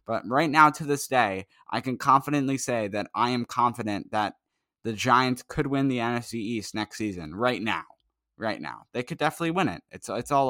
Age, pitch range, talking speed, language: 10-29, 115-140 Hz, 205 wpm, English